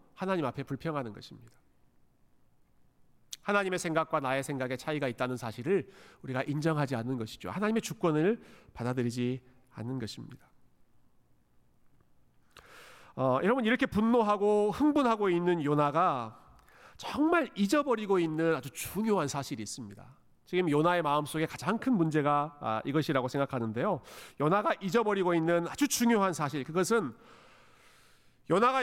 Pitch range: 145-220 Hz